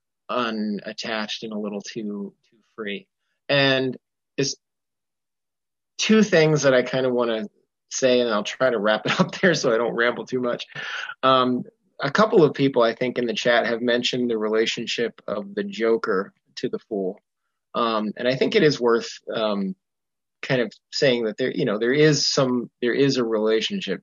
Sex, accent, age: male, American, 20-39